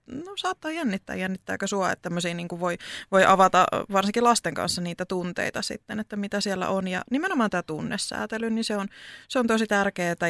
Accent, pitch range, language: native, 190-240 Hz, Finnish